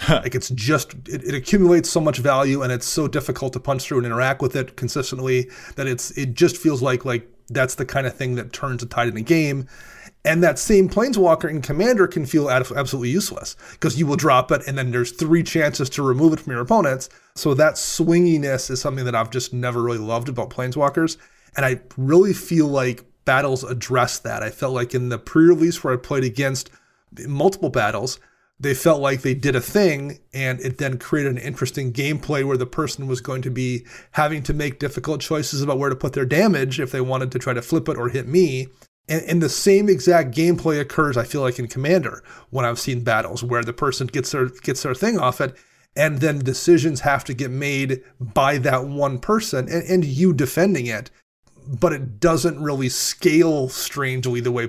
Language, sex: English, male